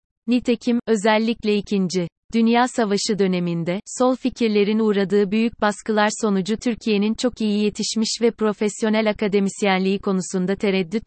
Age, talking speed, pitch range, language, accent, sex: 30-49, 115 wpm, 190-220 Hz, Turkish, native, female